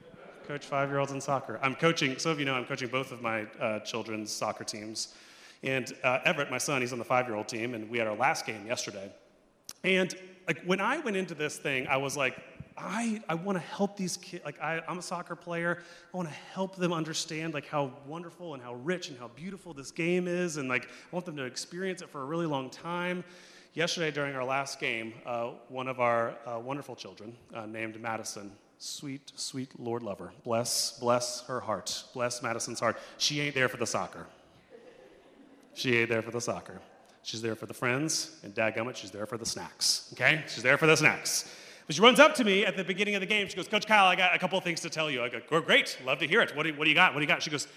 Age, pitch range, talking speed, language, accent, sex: 30-49, 120-170 Hz, 235 wpm, English, American, male